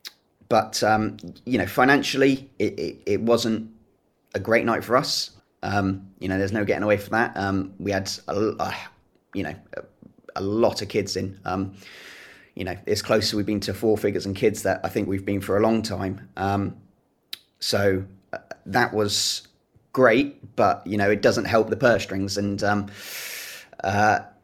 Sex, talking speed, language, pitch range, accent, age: male, 180 wpm, English, 100-115 Hz, British, 20-39